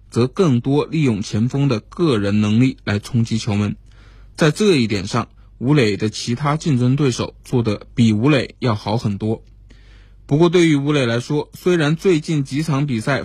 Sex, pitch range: male, 110-145 Hz